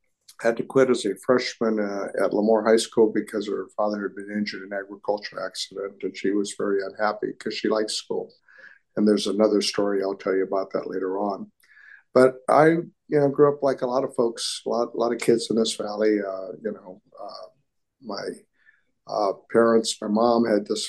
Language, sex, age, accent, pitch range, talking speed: English, male, 50-69, American, 105-120 Hz, 205 wpm